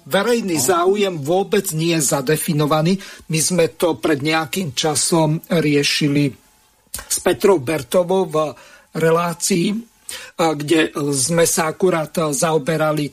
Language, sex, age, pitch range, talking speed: Slovak, male, 50-69, 155-190 Hz, 105 wpm